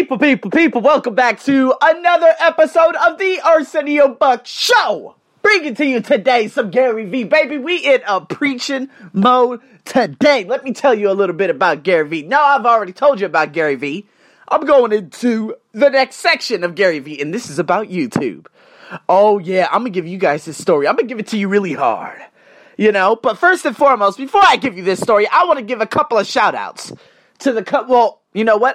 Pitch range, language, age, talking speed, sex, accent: 195-290 Hz, English, 30-49, 220 wpm, male, American